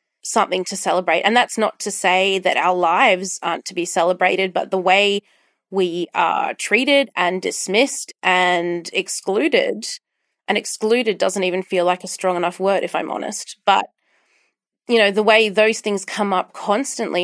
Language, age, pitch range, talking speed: English, 30-49, 185-210 Hz, 165 wpm